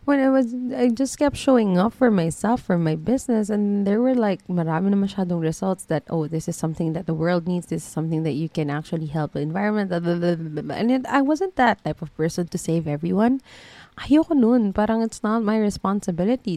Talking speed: 200 wpm